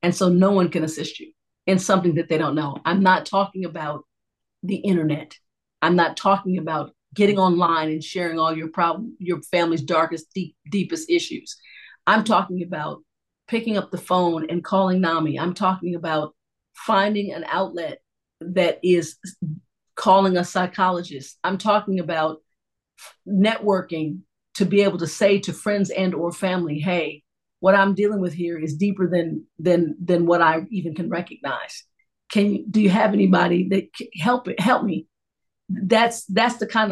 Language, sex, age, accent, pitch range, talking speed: English, female, 50-69, American, 165-195 Hz, 165 wpm